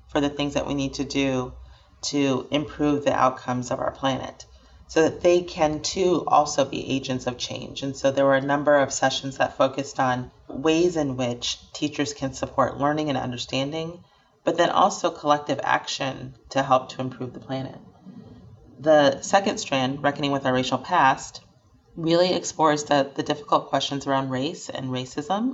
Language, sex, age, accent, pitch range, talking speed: English, female, 30-49, American, 130-150 Hz, 175 wpm